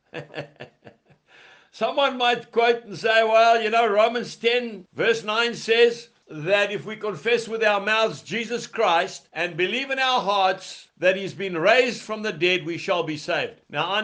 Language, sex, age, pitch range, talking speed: English, male, 60-79, 175-230 Hz, 170 wpm